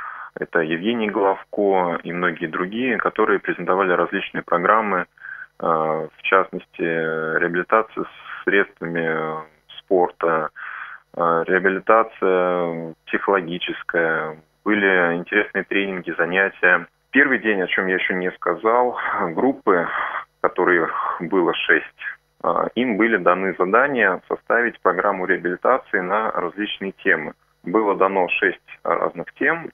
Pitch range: 85-100 Hz